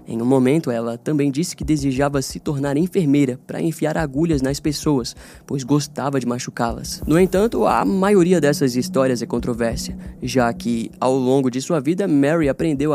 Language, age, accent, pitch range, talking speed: Portuguese, 20-39, Brazilian, 120-155 Hz, 170 wpm